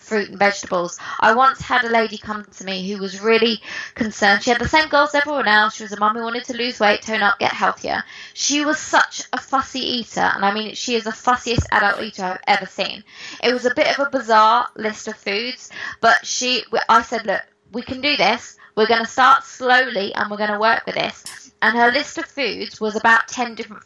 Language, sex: English, female